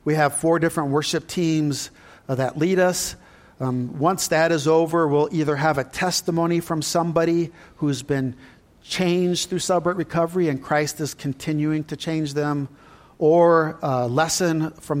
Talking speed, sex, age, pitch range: 155 wpm, male, 50-69, 140-170 Hz